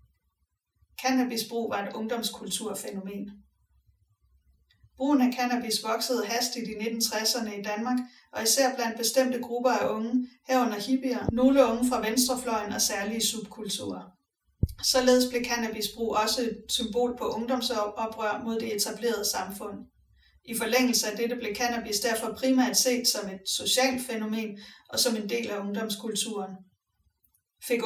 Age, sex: 30-49, female